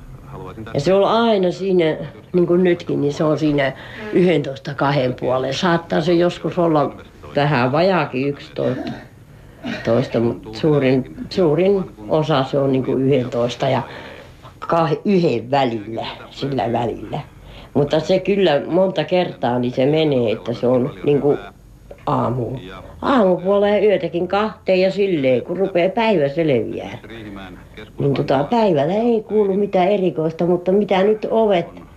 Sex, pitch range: female, 125-180 Hz